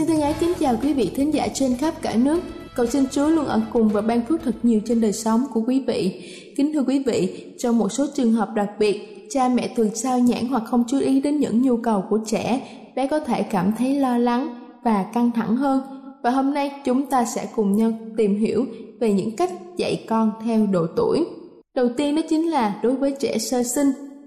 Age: 20-39